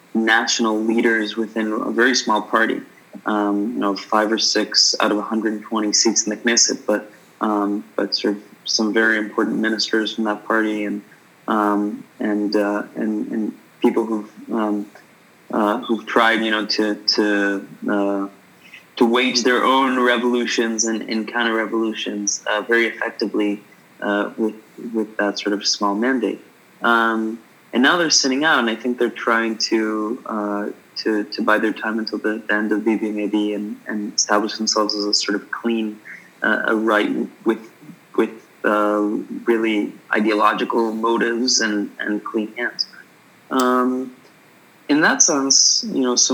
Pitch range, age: 105-120 Hz, 20-39